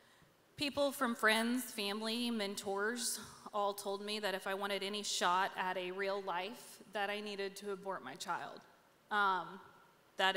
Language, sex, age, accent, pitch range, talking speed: English, female, 20-39, American, 190-220 Hz, 155 wpm